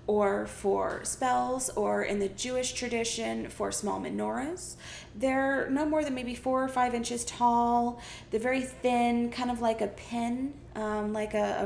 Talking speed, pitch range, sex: 170 wpm, 205-260 Hz, female